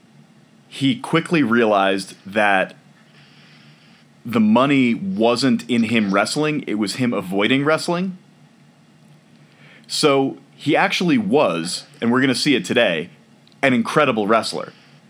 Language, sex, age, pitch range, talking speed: English, male, 30-49, 110-135 Hz, 115 wpm